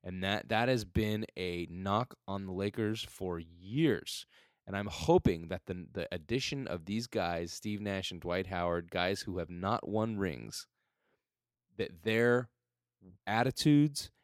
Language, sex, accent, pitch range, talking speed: English, male, American, 90-110 Hz, 150 wpm